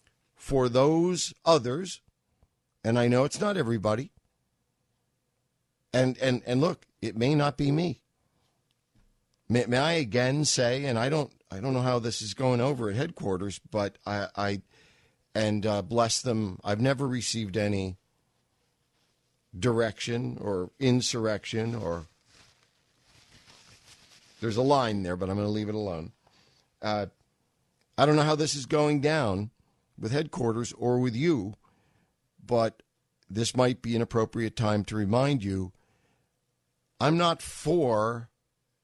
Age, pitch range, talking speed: 50-69, 105-135 Hz, 140 wpm